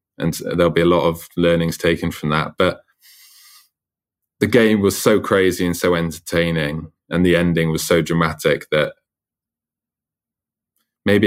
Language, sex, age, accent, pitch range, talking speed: English, male, 20-39, British, 80-90 Hz, 145 wpm